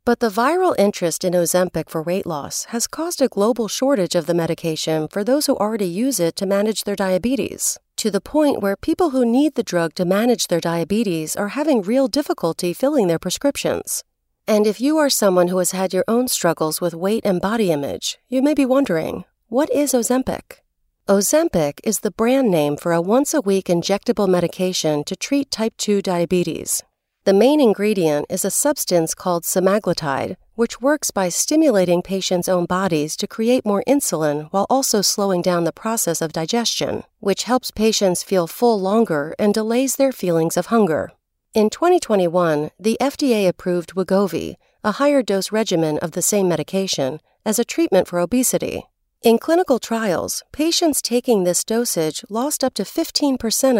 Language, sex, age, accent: English, female, 40-59, American